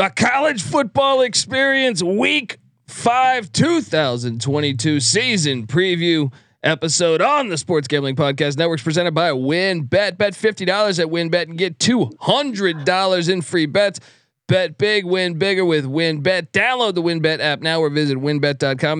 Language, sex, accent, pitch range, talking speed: English, male, American, 150-210 Hz, 150 wpm